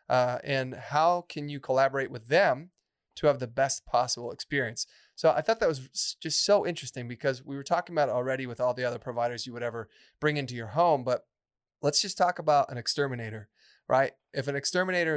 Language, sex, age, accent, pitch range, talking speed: English, male, 30-49, American, 125-155 Hz, 205 wpm